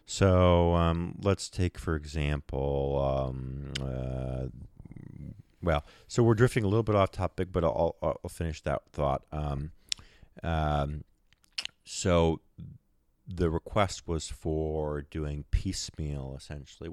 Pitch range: 75-95 Hz